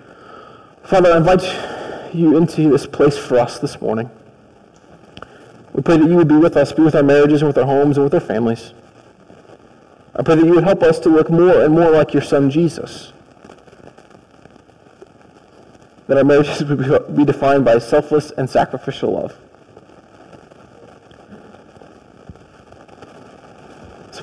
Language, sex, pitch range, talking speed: English, male, 140-180 Hz, 145 wpm